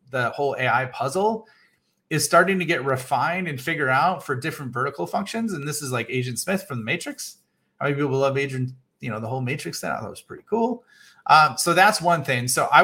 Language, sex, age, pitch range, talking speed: English, male, 30-49, 125-180 Hz, 230 wpm